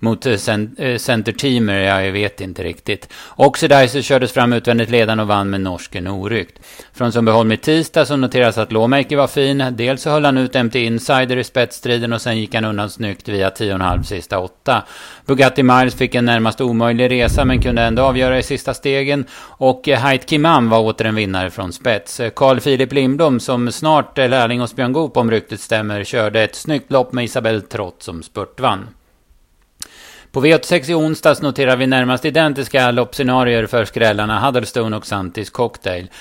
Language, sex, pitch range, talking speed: Swedish, male, 110-135 Hz, 180 wpm